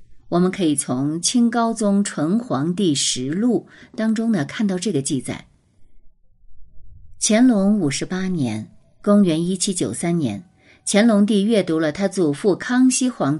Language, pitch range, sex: Chinese, 150-240 Hz, female